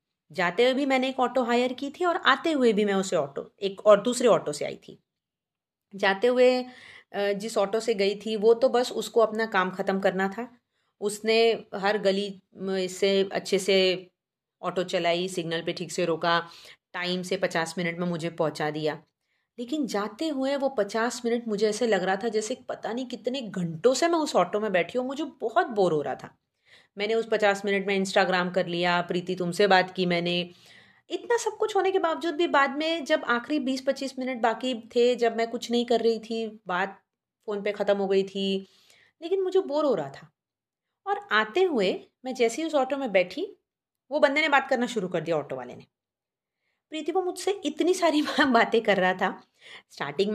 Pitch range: 190-260 Hz